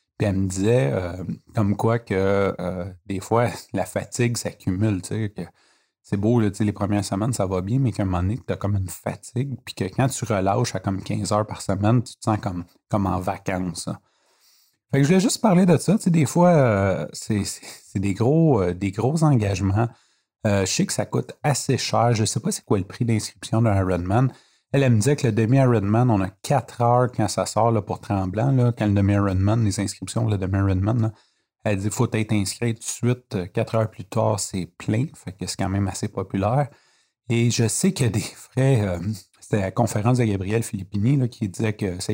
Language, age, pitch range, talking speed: French, 30-49, 100-120 Hz, 230 wpm